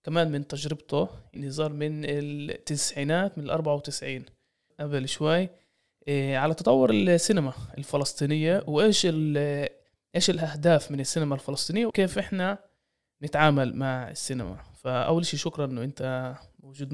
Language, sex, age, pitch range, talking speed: Arabic, male, 20-39, 140-170 Hz, 115 wpm